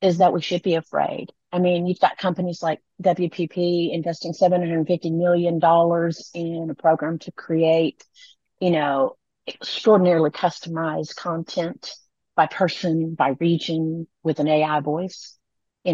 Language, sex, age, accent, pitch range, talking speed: English, female, 40-59, American, 165-200 Hz, 130 wpm